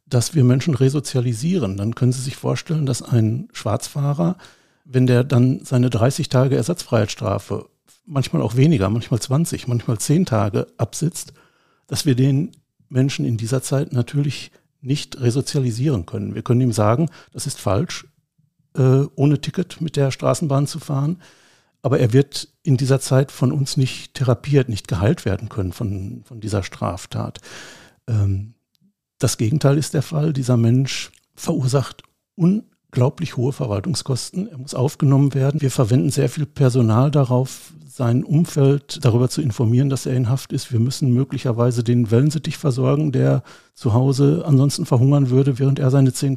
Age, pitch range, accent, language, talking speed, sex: 60-79, 125-145 Hz, German, German, 155 wpm, male